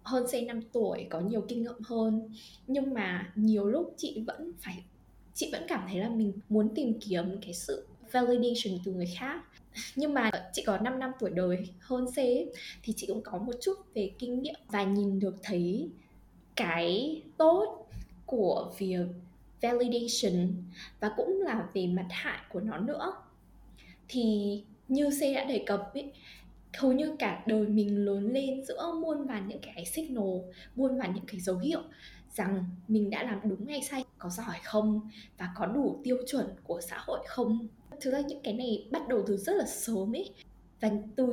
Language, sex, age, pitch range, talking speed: Vietnamese, female, 10-29, 195-260 Hz, 185 wpm